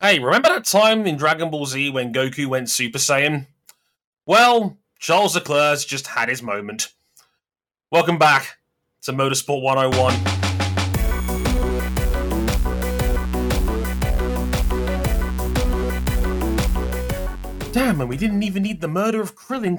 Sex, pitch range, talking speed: male, 115-175 Hz, 105 wpm